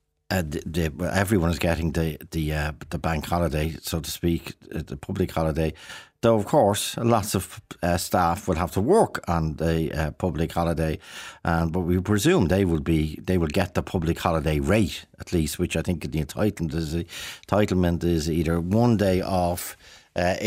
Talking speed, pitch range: 190 wpm, 80-95 Hz